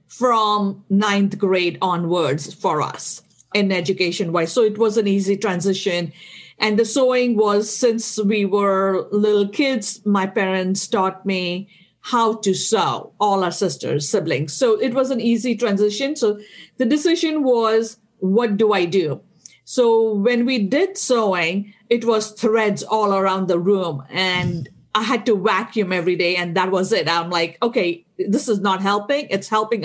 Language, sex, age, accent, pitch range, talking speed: English, female, 50-69, Indian, 185-225 Hz, 165 wpm